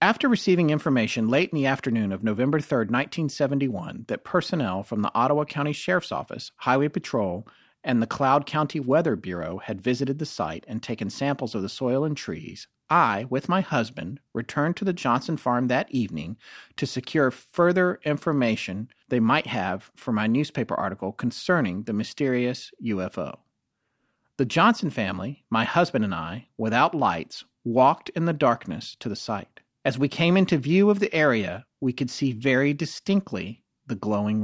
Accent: American